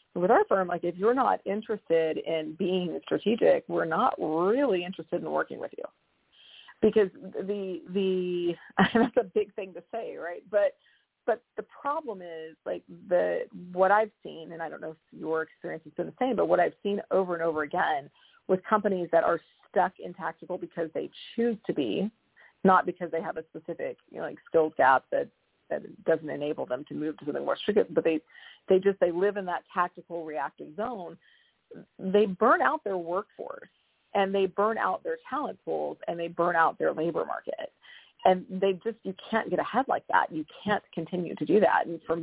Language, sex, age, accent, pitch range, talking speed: English, female, 40-59, American, 165-205 Hz, 200 wpm